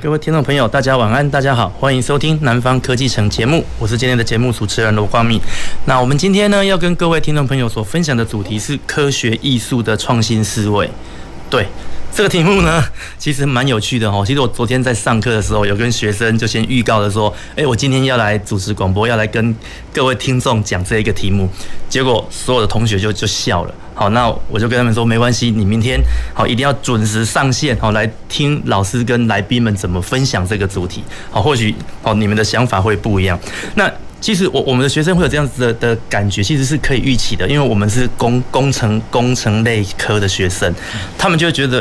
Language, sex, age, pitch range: Chinese, male, 20-39, 105-130 Hz